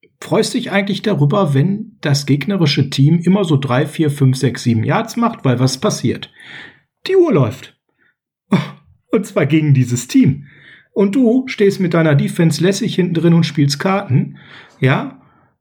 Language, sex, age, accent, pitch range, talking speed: German, male, 40-59, German, 135-195 Hz, 160 wpm